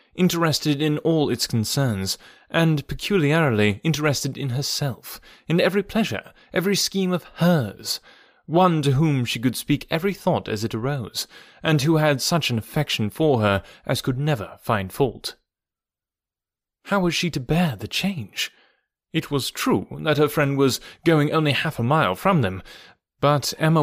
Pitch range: 115-160 Hz